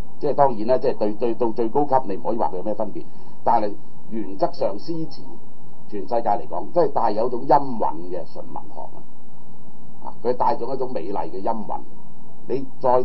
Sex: male